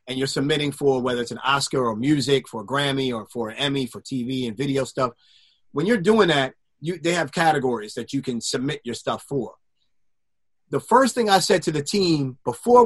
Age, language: 30-49, English